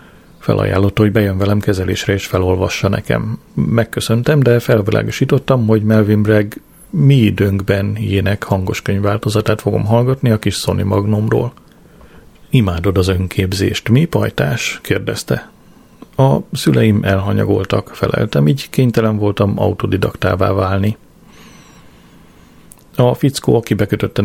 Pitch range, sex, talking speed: 100-115 Hz, male, 110 wpm